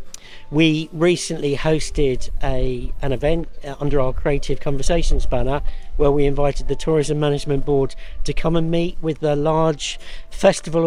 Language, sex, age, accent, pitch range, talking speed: English, male, 50-69, British, 140-170 Hz, 145 wpm